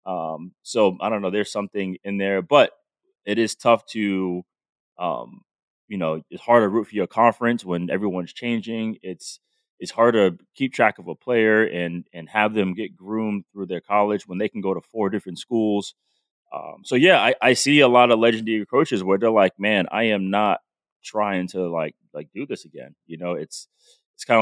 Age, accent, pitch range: 30-49, American, 95-125 Hz